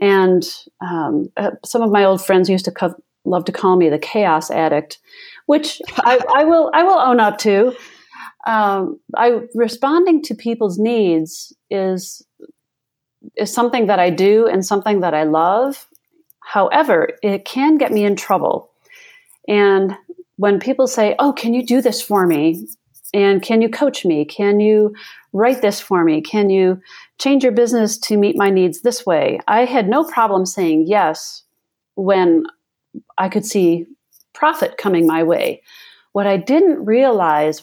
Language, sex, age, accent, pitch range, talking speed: English, female, 40-59, American, 190-255 Hz, 165 wpm